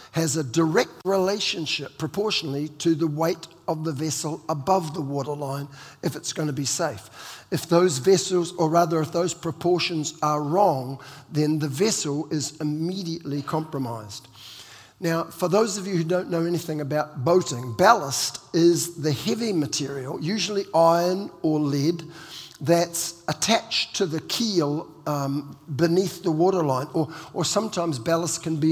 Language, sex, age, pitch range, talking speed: English, male, 50-69, 150-180 Hz, 145 wpm